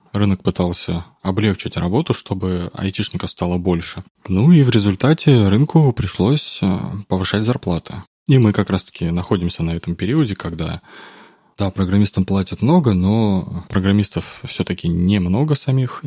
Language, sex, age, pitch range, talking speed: Russian, male, 20-39, 95-125 Hz, 125 wpm